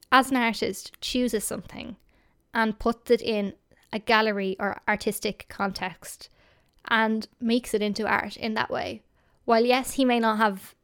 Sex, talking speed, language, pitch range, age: female, 155 wpm, English, 210-250 Hz, 10-29